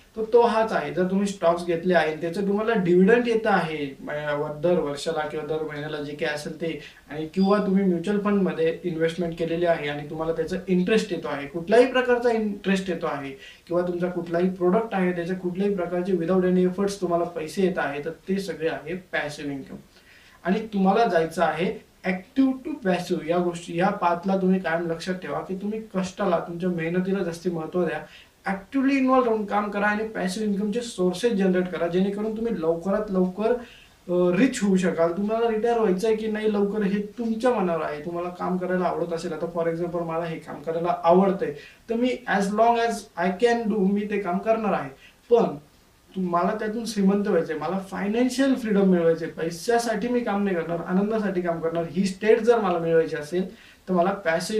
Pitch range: 165-210 Hz